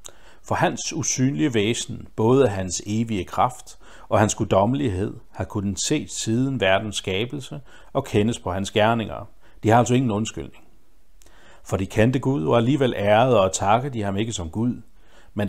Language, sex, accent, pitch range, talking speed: Danish, male, native, 100-130 Hz, 165 wpm